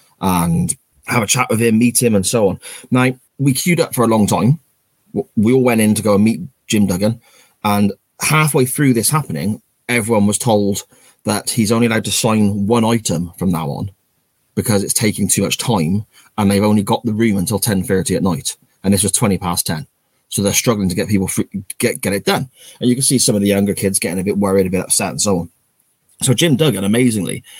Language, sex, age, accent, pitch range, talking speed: English, male, 20-39, British, 100-120 Hz, 230 wpm